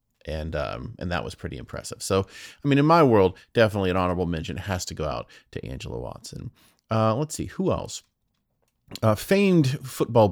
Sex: male